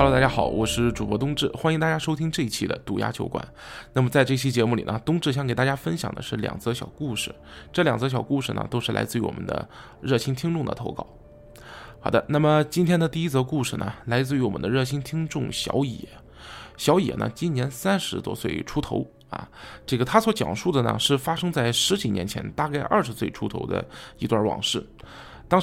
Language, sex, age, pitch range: Chinese, male, 20-39, 115-150 Hz